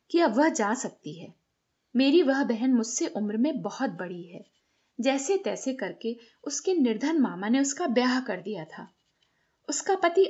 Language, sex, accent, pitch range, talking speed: Hindi, female, native, 220-300 Hz, 170 wpm